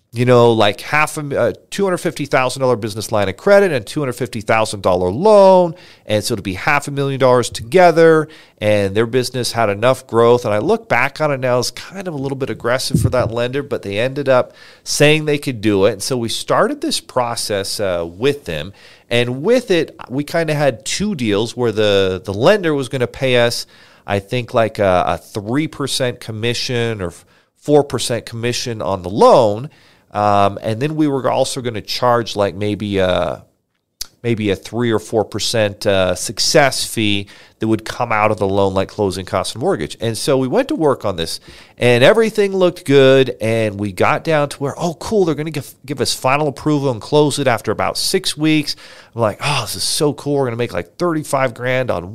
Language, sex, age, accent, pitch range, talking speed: English, male, 40-59, American, 110-145 Hz, 200 wpm